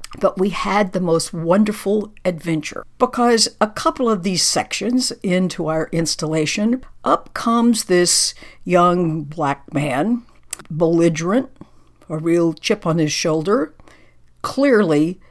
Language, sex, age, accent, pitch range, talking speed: English, female, 60-79, American, 170-225 Hz, 120 wpm